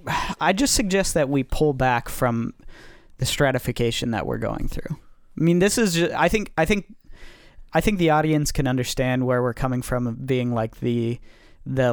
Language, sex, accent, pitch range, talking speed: English, male, American, 120-155 Hz, 180 wpm